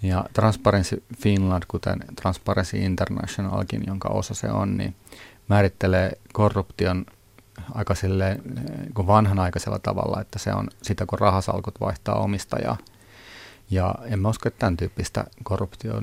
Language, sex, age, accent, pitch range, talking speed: Finnish, male, 40-59, native, 95-110 Hz, 115 wpm